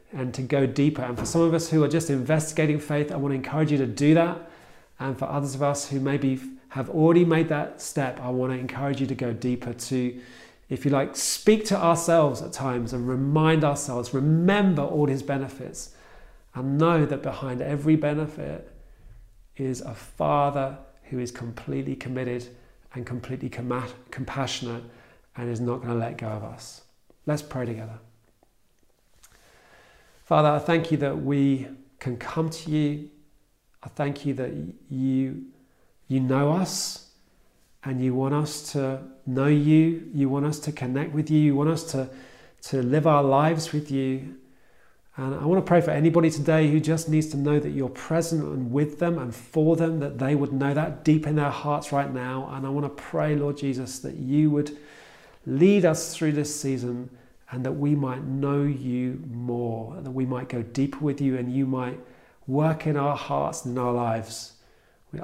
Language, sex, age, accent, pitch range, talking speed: English, male, 40-59, British, 125-150 Hz, 185 wpm